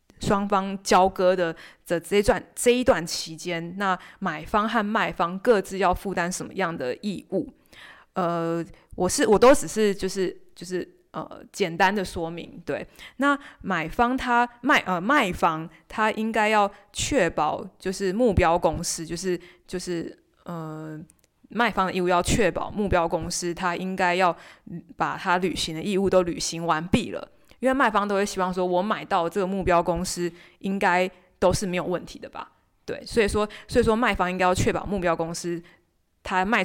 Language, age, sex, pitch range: Chinese, 20-39, female, 170-205 Hz